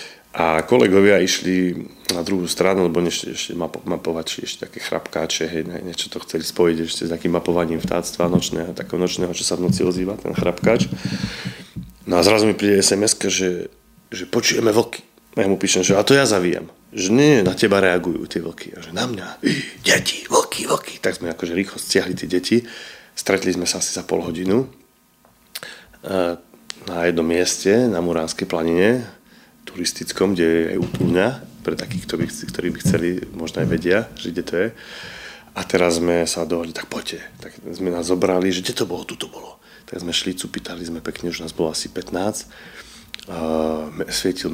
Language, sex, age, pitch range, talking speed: Slovak, male, 30-49, 85-100 Hz, 180 wpm